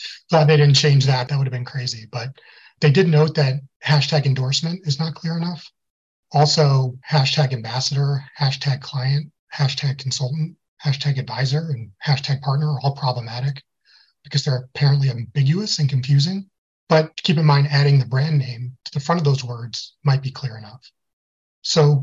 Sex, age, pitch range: male, 30-49, 130-150 Hz